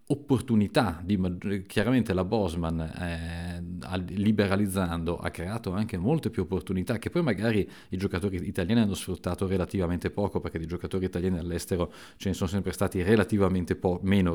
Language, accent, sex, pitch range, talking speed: Italian, native, male, 85-100 Hz, 140 wpm